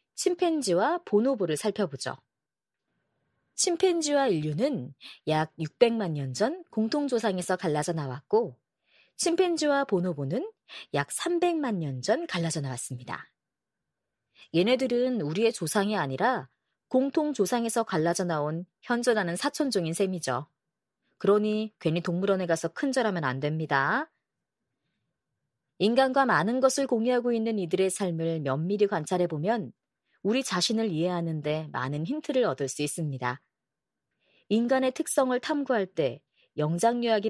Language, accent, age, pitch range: Korean, native, 30-49, 160-255 Hz